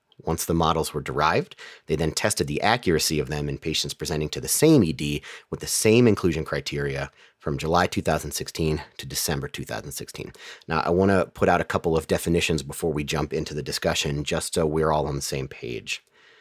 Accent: American